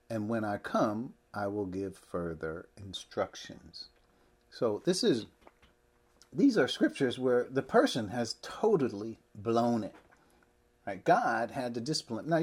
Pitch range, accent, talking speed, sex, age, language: 100-140 Hz, American, 135 wpm, male, 40-59, English